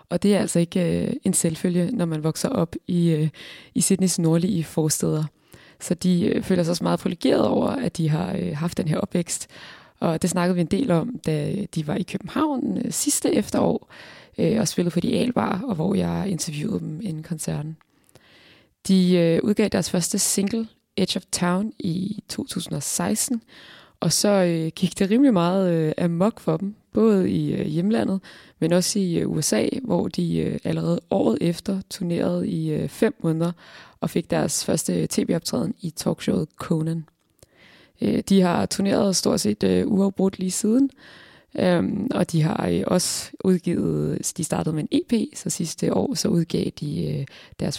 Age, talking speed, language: 20-39, 155 wpm, Danish